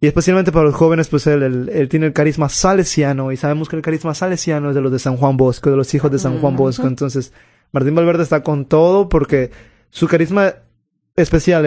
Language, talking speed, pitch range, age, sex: Spanish, 220 wpm, 140-165 Hz, 20-39, male